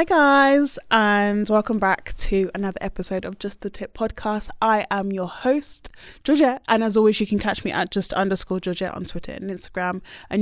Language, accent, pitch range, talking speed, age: English, British, 180-225 Hz, 195 wpm, 20-39